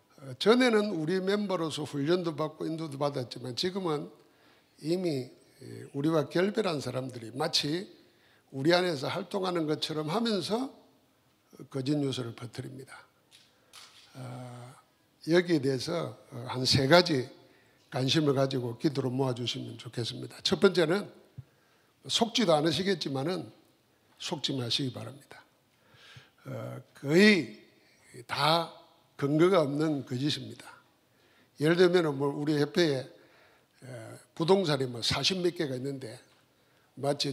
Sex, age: male, 60-79